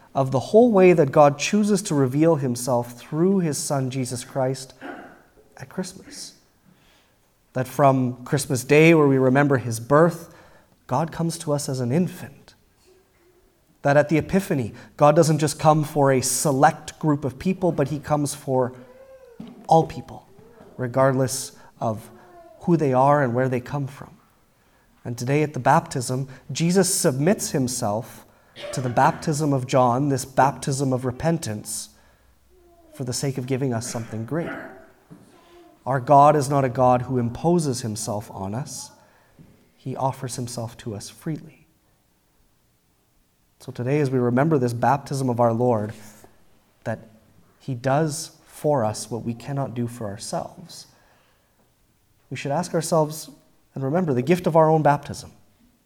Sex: male